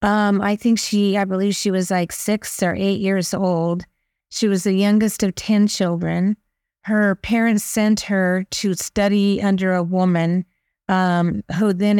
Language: English